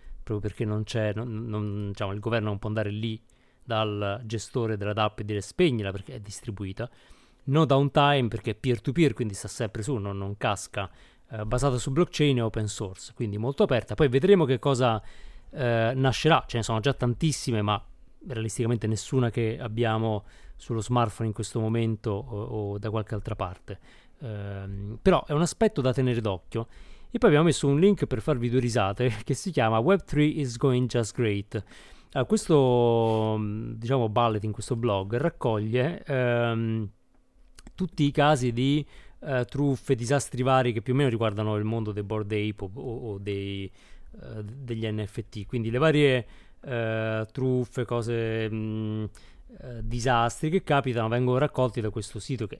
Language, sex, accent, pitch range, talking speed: Italian, male, native, 110-130 Hz, 170 wpm